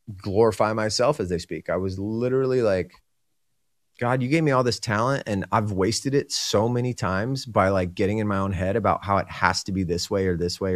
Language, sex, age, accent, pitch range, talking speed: English, male, 30-49, American, 95-120 Hz, 230 wpm